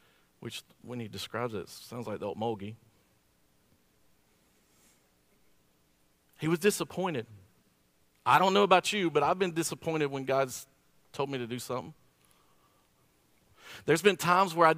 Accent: American